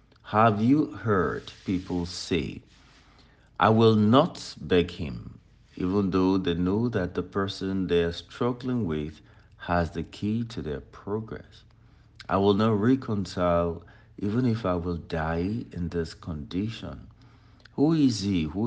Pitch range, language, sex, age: 85-115 Hz, English, male, 60-79